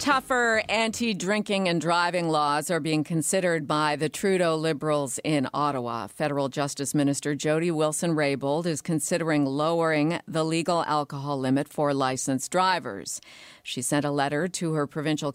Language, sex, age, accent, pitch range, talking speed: English, female, 50-69, American, 140-175 Hz, 140 wpm